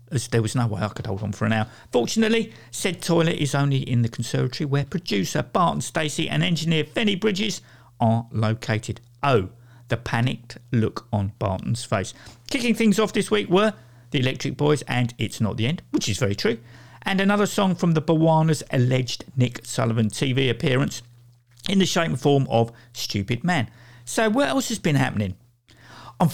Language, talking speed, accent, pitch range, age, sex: English, 180 wpm, British, 115-155 Hz, 50-69, male